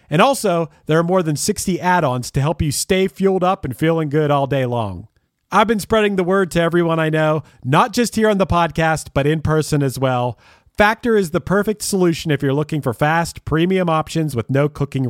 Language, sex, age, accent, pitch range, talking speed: English, male, 40-59, American, 135-190 Hz, 220 wpm